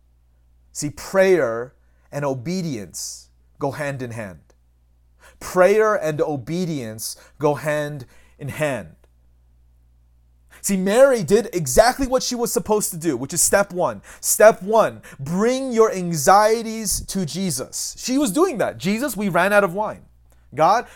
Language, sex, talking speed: English, male, 135 wpm